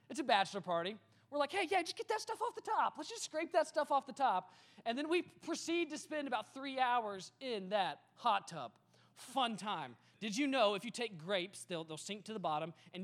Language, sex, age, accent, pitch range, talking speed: English, male, 20-39, American, 185-265 Hz, 240 wpm